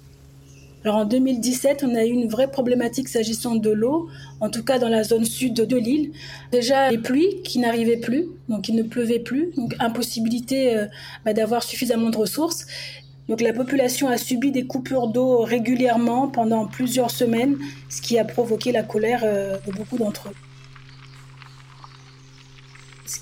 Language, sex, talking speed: French, female, 160 wpm